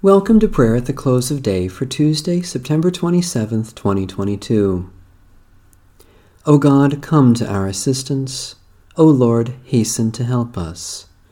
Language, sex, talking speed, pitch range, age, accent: English, male, 135 wpm, 95-130 Hz, 40-59, American